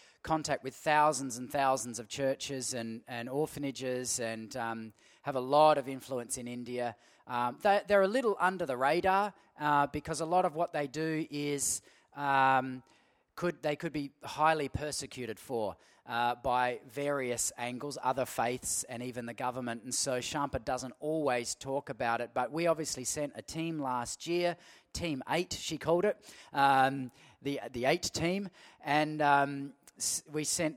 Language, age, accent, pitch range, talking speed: English, 30-49, Australian, 125-155 Hz, 160 wpm